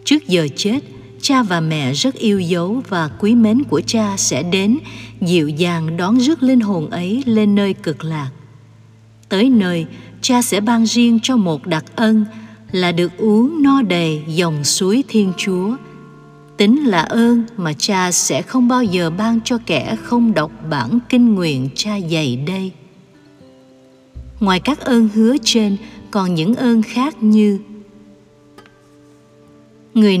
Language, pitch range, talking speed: Vietnamese, 155-230 Hz, 155 wpm